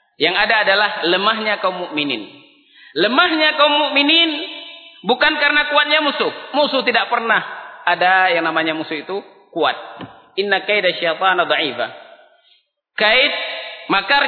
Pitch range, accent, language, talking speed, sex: 185-295 Hz, Indonesian, English, 115 wpm, male